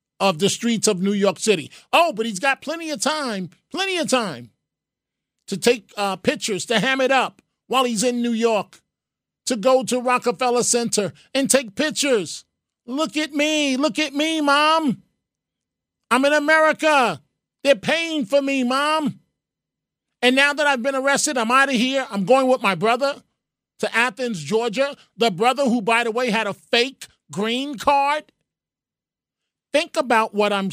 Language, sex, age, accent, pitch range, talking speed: English, male, 40-59, American, 170-260 Hz, 170 wpm